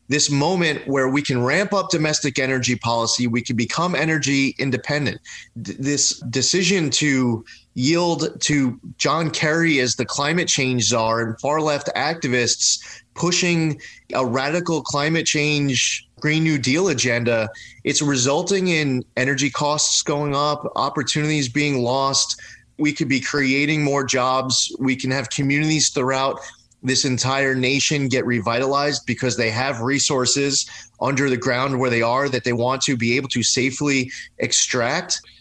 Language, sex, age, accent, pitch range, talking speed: English, male, 30-49, American, 125-150 Hz, 140 wpm